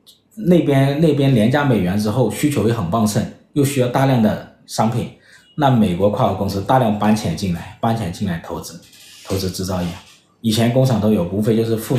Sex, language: male, Chinese